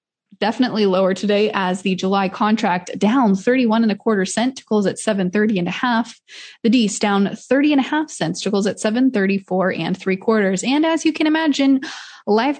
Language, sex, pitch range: English, female, 195-250 Hz